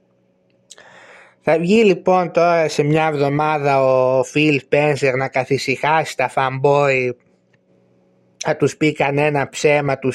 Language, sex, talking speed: Greek, male, 120 wpm